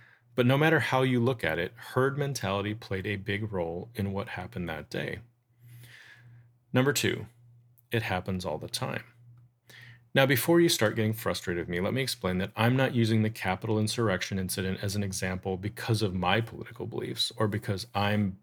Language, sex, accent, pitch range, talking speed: English, male, American, 100-125 Hz, 180 wpm